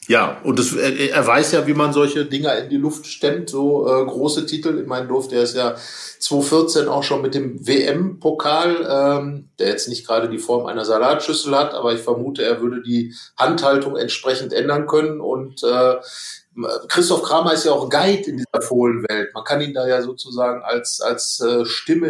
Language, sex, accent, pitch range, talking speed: German, male, German, 130-150 Hz, 185 wpm